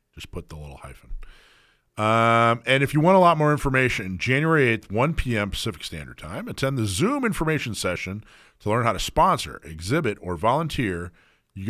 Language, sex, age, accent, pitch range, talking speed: English, male, 40-59, American, 90-130 Hz, 175 wpm